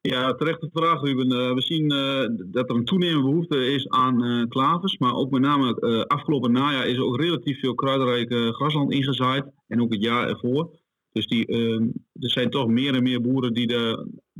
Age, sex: 40-59, male